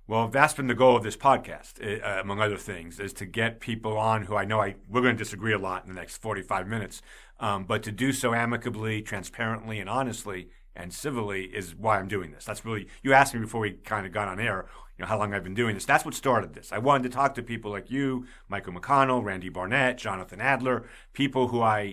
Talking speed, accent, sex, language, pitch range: 245 wpm, American, male, English, 100-125 Hz